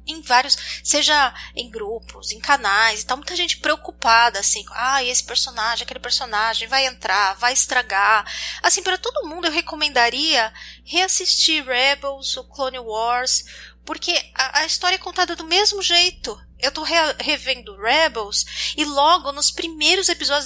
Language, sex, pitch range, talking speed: Portuguese, female, 245-325 Hz, 150 wpm